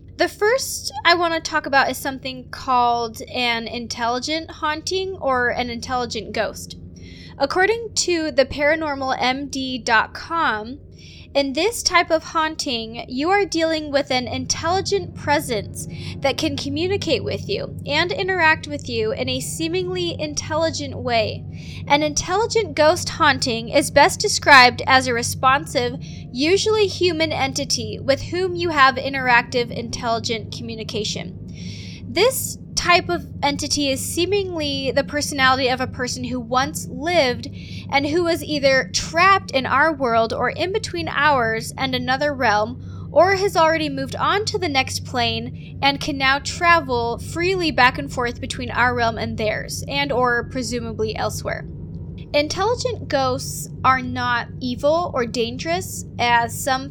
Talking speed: 135 wpm